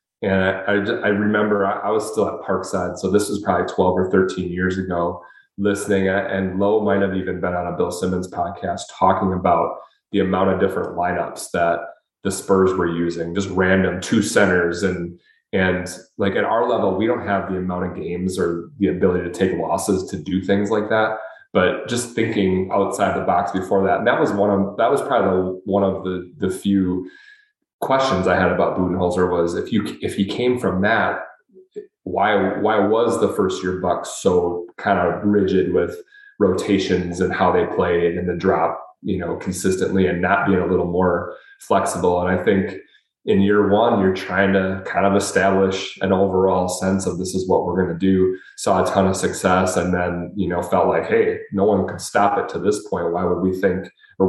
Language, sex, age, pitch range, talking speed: English, male, 30-49, 90-100 Hz, 200 wpm